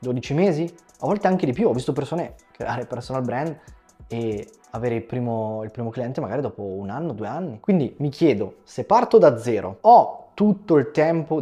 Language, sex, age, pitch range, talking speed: Italian, male, 20-39, 120-155 Hz, 190 wpm